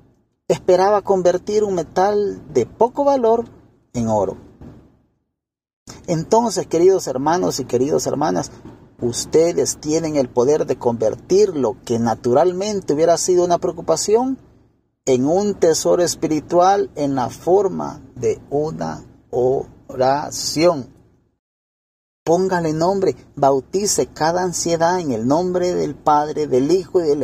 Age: 40-59